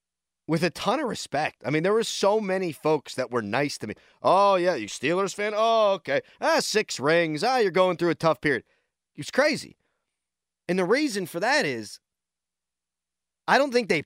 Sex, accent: male, American